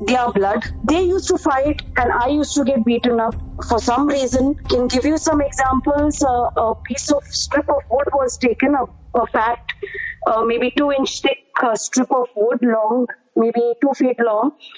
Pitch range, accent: 245-310 Hz, Indian